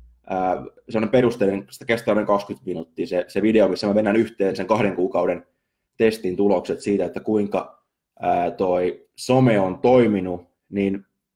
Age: 20-39